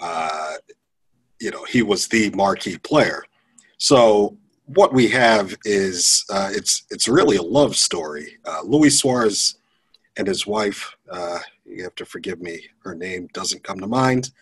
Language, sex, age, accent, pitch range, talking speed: English, male, 40-59, American, 100-125 Hz, 160 wpm